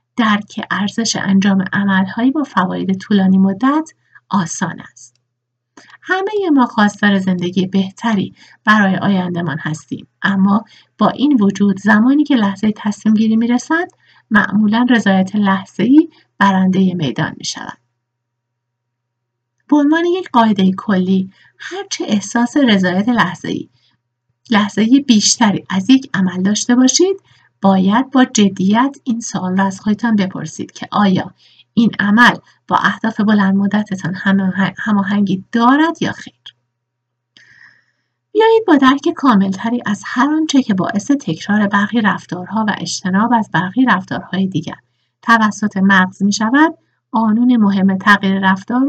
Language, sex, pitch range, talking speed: Persian, female, 185-240 Hz, 120 wpm